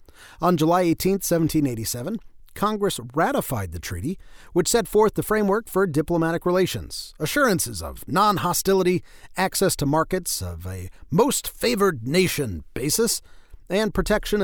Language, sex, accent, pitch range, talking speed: English, male, American, 135-195 Hz, 115 wpm